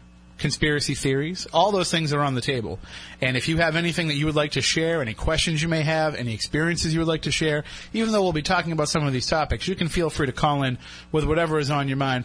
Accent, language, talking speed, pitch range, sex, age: American, English, 270 wpm, 130-160 Hz, male, 30-49